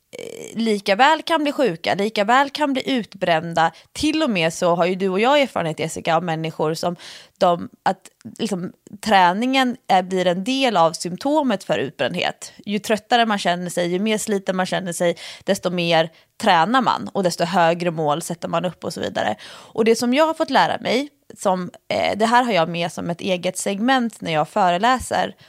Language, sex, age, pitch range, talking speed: English, female, 20-39, 175-250 Hz, 195 wpm